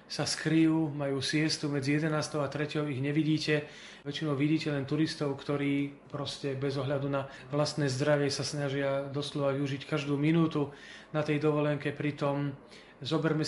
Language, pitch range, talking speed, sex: Slovak, 140-155 Hz, 145 wpm, male